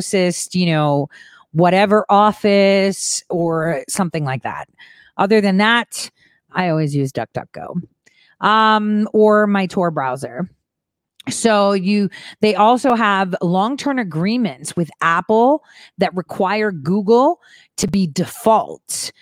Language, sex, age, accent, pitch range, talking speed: English, female, 30-49, American, 155-205 Hz, 110 wpm